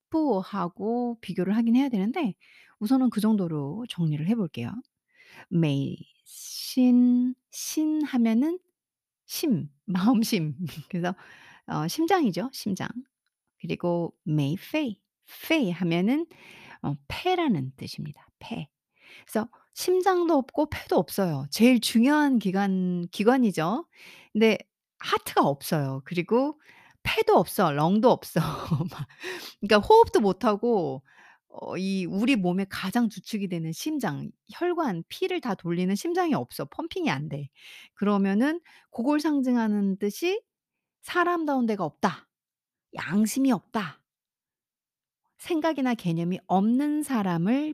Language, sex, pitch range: Korean, female, 180-285 Hz